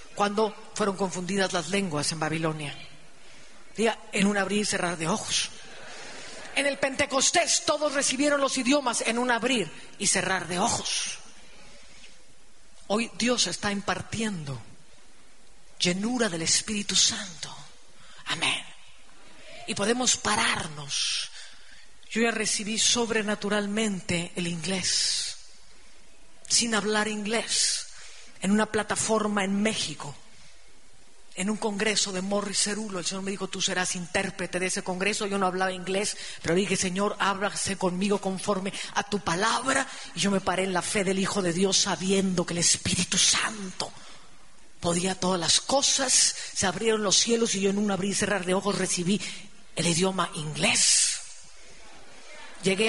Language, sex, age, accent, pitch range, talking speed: English, female, 40-59, Spanish, 185-220 Hz, 135 wpm